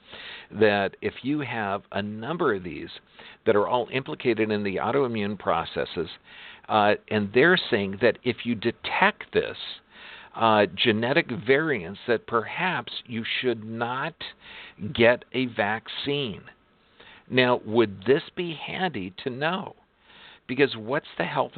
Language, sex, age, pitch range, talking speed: English, male, 50-69, 110-145 Hz, 130 wpm